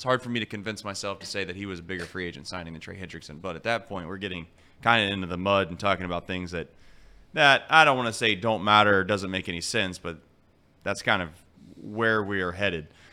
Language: English